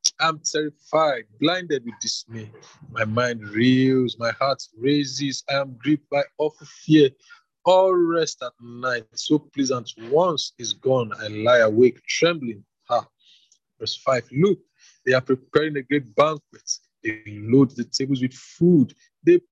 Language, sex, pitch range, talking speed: English, male, 130-195 Hz, 150 wpm